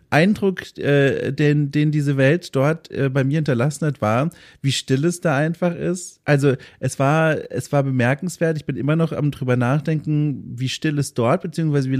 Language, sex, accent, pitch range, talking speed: German, male, German, 135-170 Hz, 180 wpm